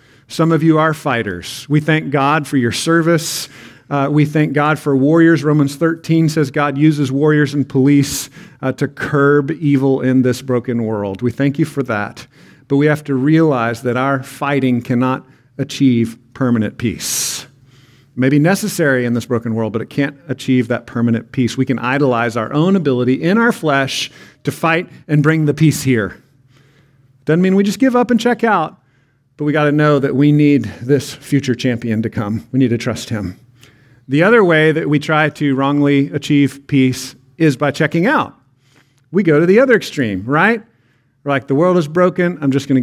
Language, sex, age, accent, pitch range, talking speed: English, male, 50-69, American, 130-160 Hz, 190 wpm